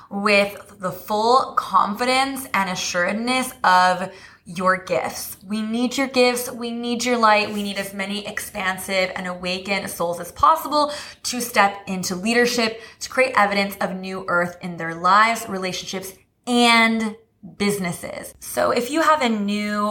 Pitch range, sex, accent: 180-225 Hz, female, American